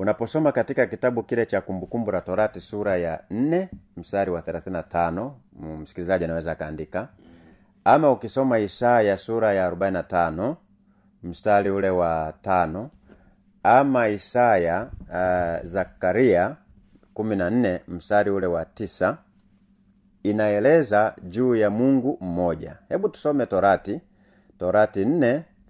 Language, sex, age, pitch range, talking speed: Swahili, male, 30-49, 90-130 Hz, 110 wpm